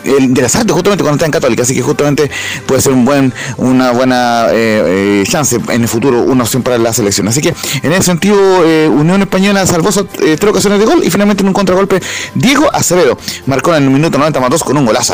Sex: male